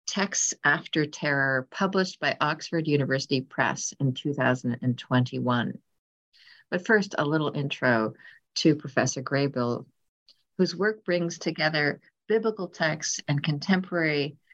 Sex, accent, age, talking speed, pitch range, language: female, American, 50-69, 105 wpm, 135-175 Hz, English